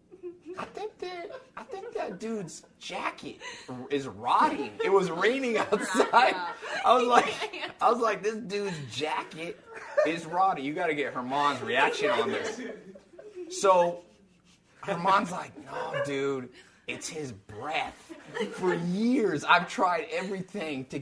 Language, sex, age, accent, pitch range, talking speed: English, male, 30-49, American, 155-250 Hz, 135 wpm